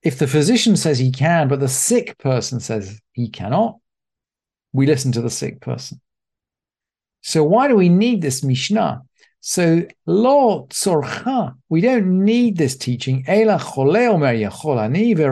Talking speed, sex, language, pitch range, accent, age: 130 wpm, male, English, 130-180 Hz, British, 50-69